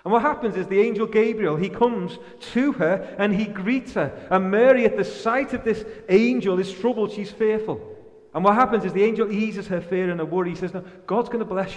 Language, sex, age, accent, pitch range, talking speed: English, male, 30-49, British, 165-220 Hz, 235 wpm